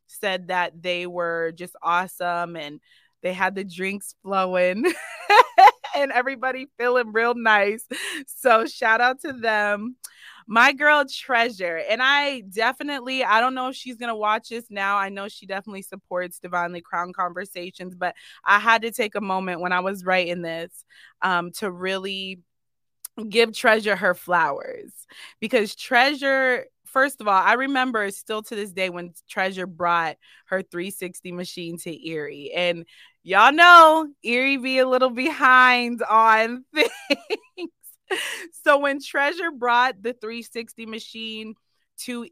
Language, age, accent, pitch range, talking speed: English, 20-39, American, 185-250 Hz, 145 wpm